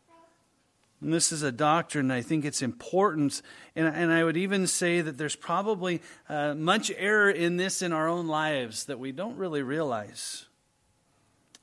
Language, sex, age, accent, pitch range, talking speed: English, male, 40-59, American, 140-190 Hz, 165 wpm